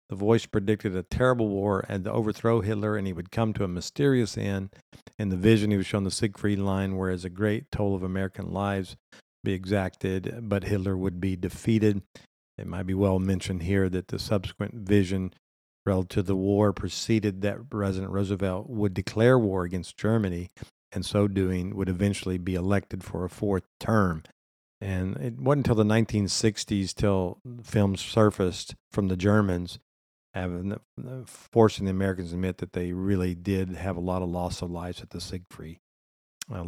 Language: English